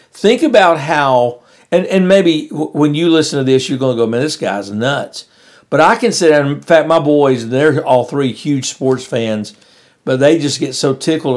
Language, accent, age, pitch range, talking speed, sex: English, American, 50-69, 130-170 Hz, 210 wpm, male